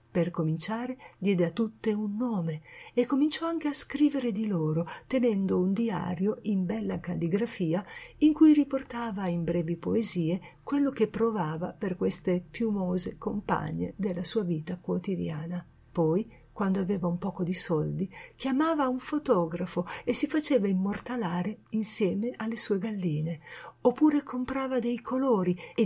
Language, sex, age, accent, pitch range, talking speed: Italian, female, 50-69, native, 175-245 Hz, 140 wpm